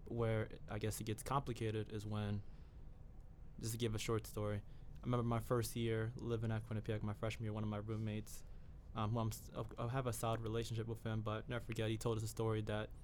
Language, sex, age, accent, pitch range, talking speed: English, male, 20-39, American, 110-120 Hz, 225 wpm